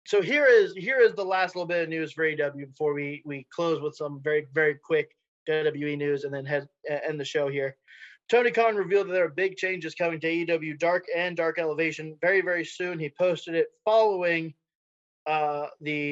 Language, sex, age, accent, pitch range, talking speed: English, male, 20-39, American, 150-185 Hz, 205 wpm